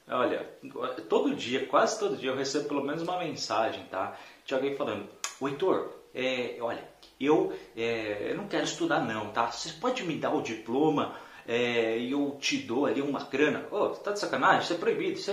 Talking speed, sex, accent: 205 wpm, male, Brazilian